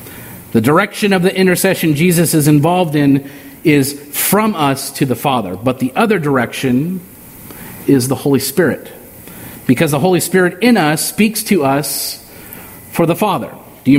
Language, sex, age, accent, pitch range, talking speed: English, male, 40-59, American, 145-200 Hz, 160 wpm